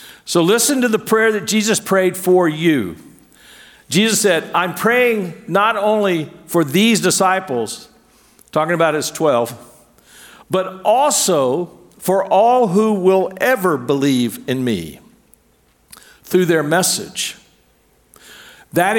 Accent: American